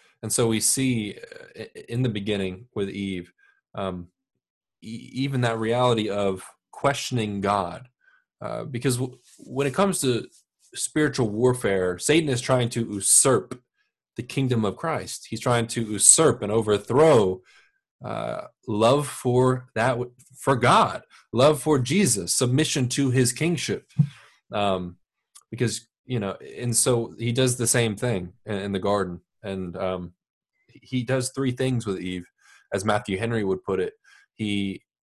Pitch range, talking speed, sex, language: 105-130 Hz, 140 wpm, male, English